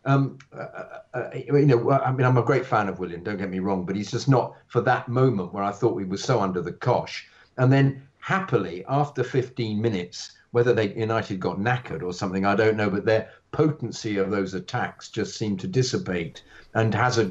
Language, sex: English, male